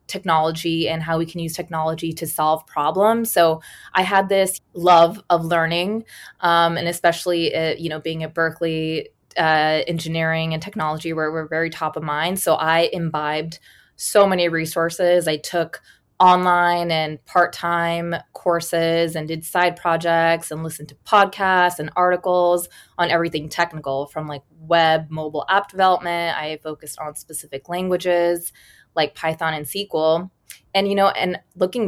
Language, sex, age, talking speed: English, female, 20-39, 150 wpm